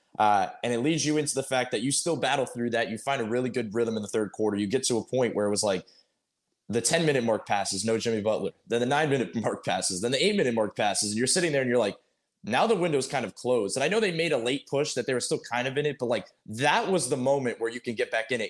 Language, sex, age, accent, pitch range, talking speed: English, male, 20-39, American, 115-150 Hz, 300 wpm